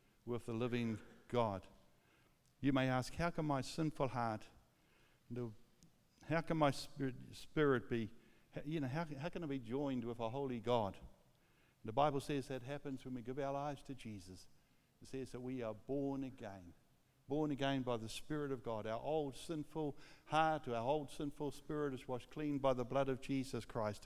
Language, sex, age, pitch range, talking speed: English, male, 60-79, 115-145 Hz, 180 wpm